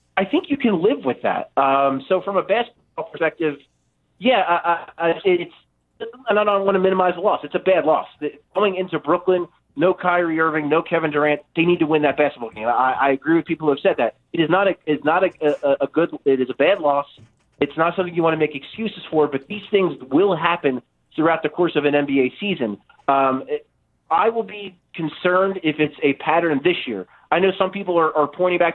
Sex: male